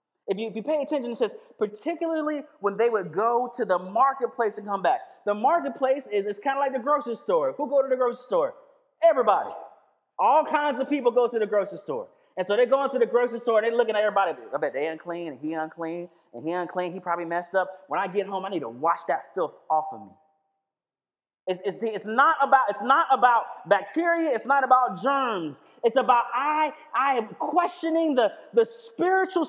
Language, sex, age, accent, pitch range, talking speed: English, male, 30-49, American, 210-295 Hz, 215 wpm